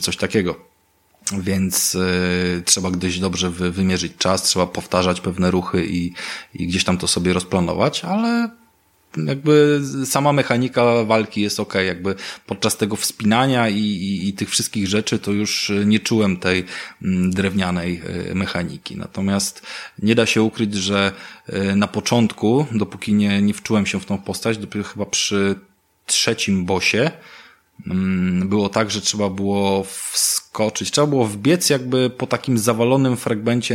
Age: 20-39